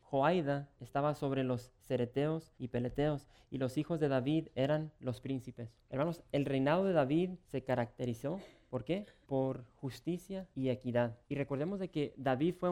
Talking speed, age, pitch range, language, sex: 160 wpm, 20-39, 130-160 Hz, English, male